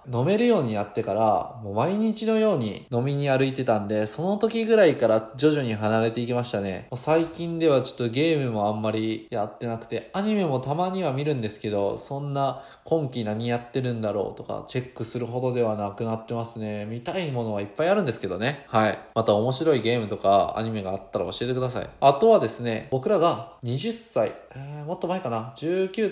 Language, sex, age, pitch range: Japanese, male, 20-39, 110-160 Hz